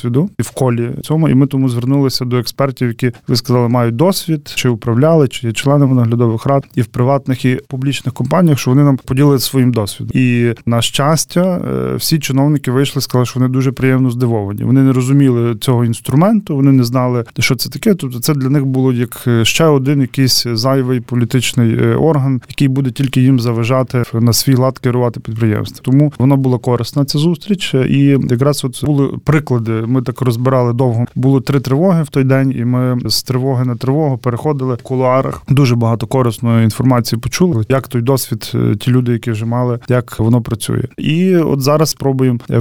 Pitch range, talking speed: 120-140 Hz, 185 wpm